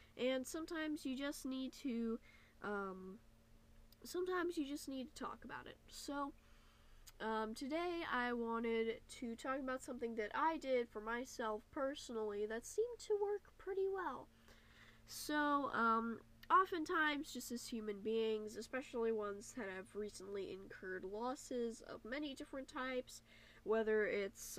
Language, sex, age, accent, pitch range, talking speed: English, female, 10-29, American, 205-275 Hz, 135 wpm